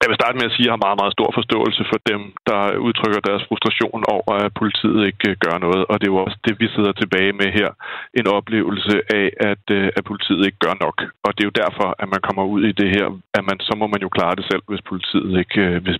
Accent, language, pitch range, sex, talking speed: native, Danish, 95-105 Hz, male, 250 wpm